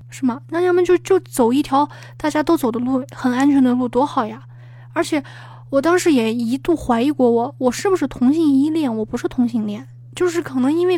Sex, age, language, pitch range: female, 20-39, Chinese, 235-295 Hz